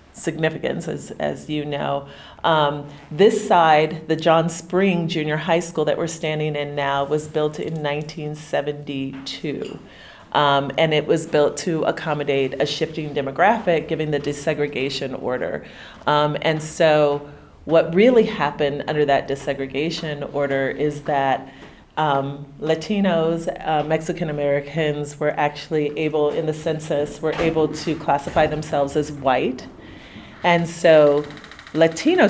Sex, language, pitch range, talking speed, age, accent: female, English, 145-165 Hz, 130 wpm, 40-59, American